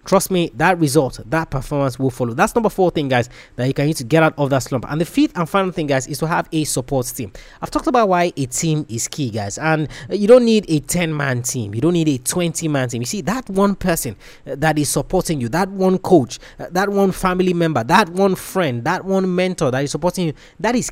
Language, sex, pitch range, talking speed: English, male, 145-195 Hz, 245 wpm